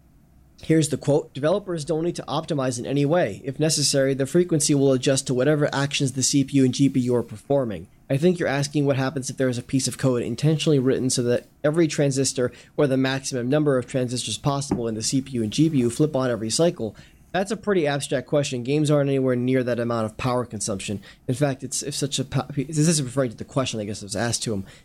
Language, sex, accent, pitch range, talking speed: English, male, American, 120-140 Hz, 225 wpm